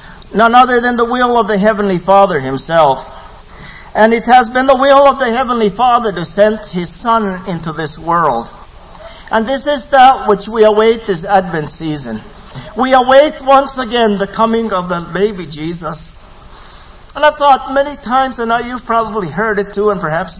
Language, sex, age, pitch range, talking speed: English, male, 50-69, 170-230 Hz, 175 wpm